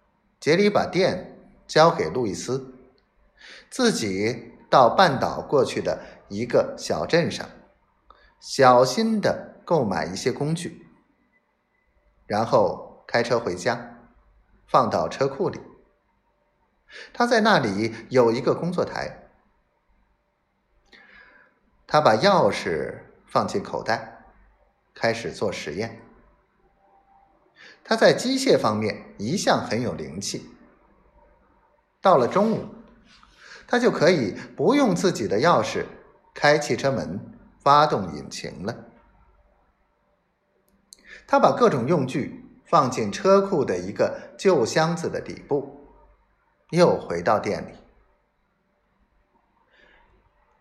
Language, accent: Chinese, native